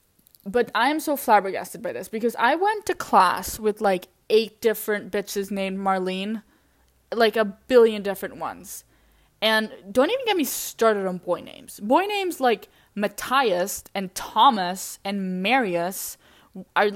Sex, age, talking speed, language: female, 10-29, 150 wpm, English